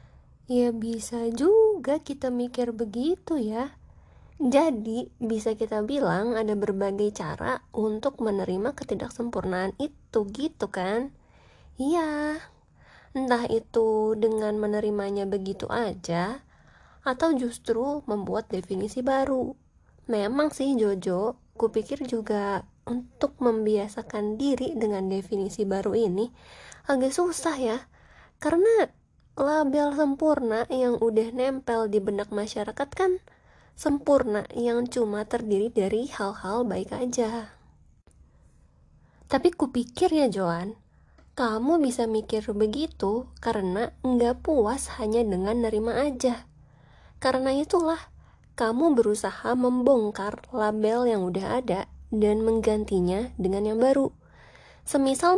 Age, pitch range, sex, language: 20-39, 215-270 Hz, female, Indonesian